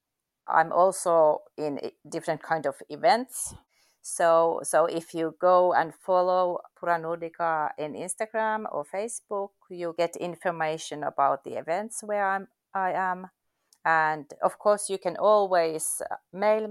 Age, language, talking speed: 30-49, English, 130 wpm